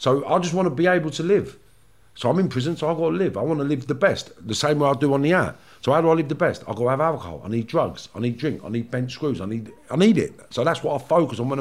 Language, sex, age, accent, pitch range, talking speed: English, male, 50-69, British, 85-140 Hz, 335 wpm